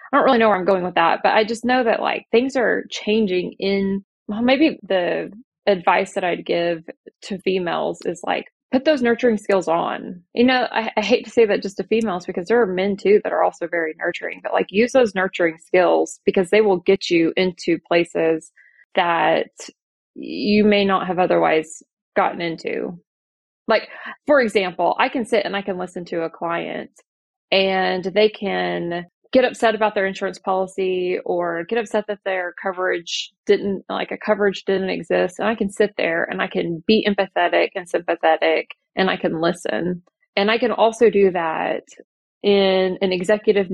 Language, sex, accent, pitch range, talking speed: English, female, American, 175-220 Hz, 185 wpm